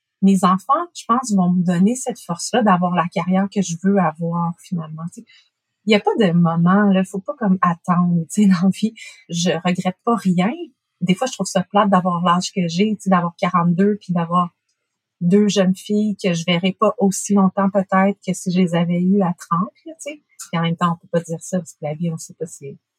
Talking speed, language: 255 wpm, French